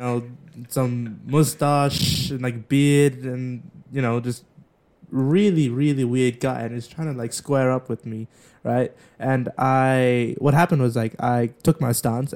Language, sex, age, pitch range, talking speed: English, male, 20-39, 125-160 Hz, 165 wpm